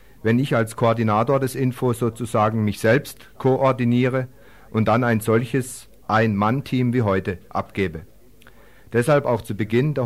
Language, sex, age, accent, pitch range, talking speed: German, male, 50-69, German, 110-130 Hz, 135 wpm